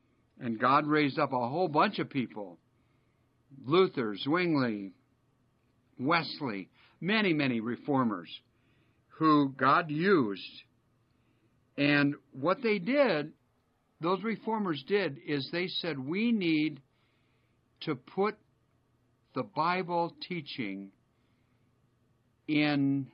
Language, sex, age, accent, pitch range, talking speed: English, male, 60-79, American, 120-160 Hz, 95 wpm